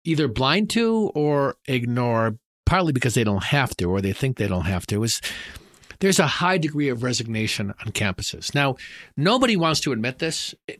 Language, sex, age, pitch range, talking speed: English, male, 50-69, 120-155 Hz, 185 wpm